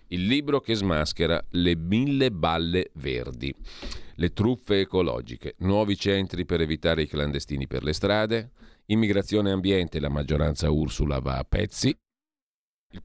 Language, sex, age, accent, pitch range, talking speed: Italian, male, 40-59, native, 75-105 Hz, 135 wpm